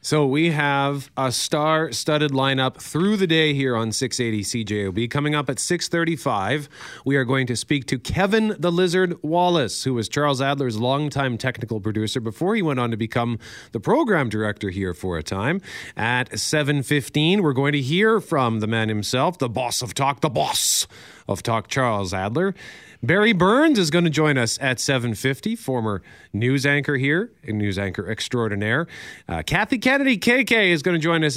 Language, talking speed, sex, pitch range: English, 180 wpm, male, 115-155 Hz